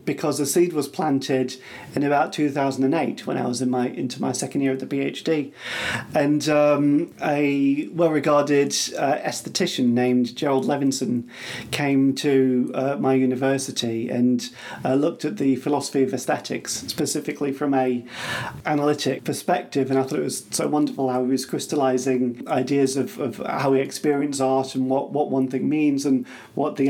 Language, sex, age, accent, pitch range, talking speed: English, male, 40-59, British, 130-145 Hz, 165 wpm